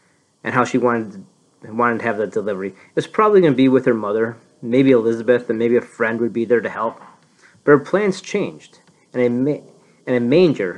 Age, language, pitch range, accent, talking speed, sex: 30-49, English, 120-150 Hz, American, 205 wpm, male